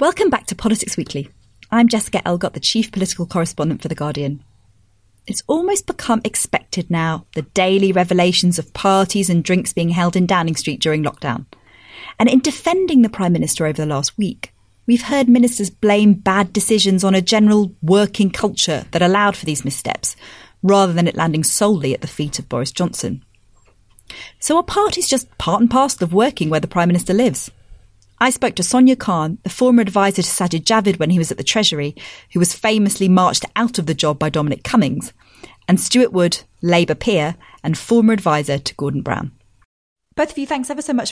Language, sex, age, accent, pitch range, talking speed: English, female, 30-49, British, 160-230 Hz, 190 wpm